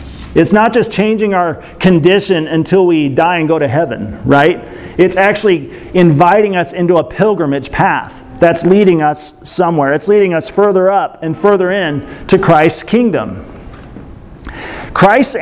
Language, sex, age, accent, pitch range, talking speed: English, male, 40-59, American, 165-210 Hz, 150 wpm